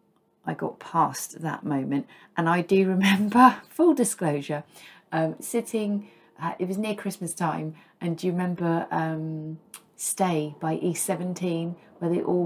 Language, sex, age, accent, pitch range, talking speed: English, female, 40-59, British, 155-200 Hz, 150 wpm